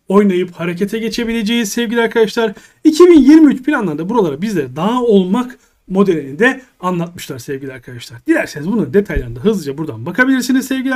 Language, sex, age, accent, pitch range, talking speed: Turkish, male, 40-59, native, 180-250 Hz, 125 wpm